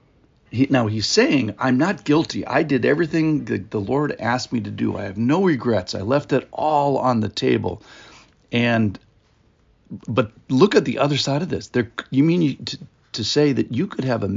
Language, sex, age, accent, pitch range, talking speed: English, male, 50-69, American, 110-140 Hz, 200 wpm